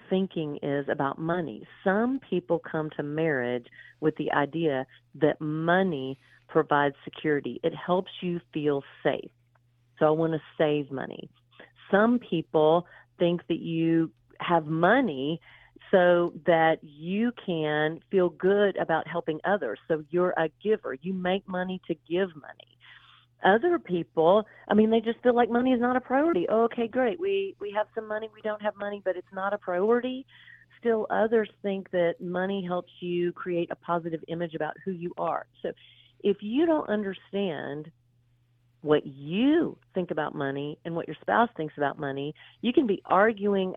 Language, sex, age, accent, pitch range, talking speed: English, female, 40-59, American, 155-205 Hz, 160 wpm